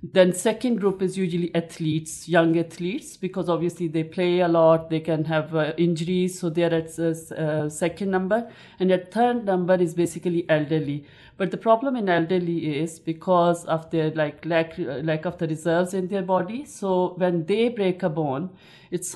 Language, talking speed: English, 180 wpm